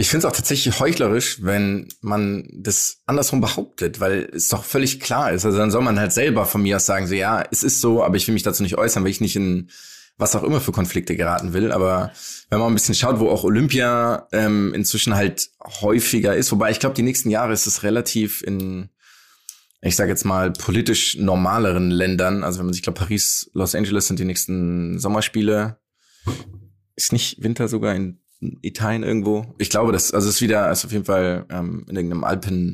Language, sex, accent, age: German, male, German, 20-39